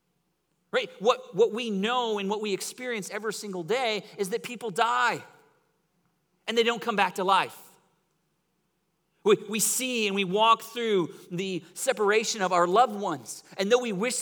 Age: 40-59